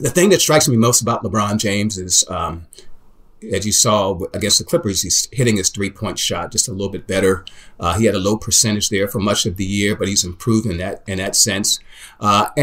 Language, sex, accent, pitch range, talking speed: English, male, American, 100-125 Hz, 230 wpm